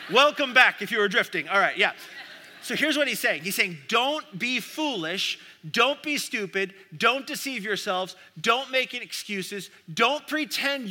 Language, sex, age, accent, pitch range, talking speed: English, male, 30-49, American, 195-270 Hz, 165 wpm